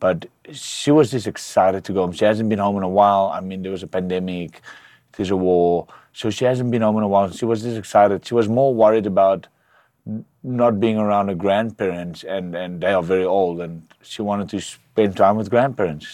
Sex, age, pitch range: male, 30-49, 90-110 Hz